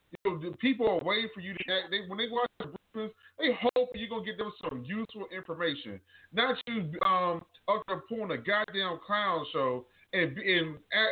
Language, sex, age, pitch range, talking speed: English, male, 20-39, 165-255 Hz, 180 wpm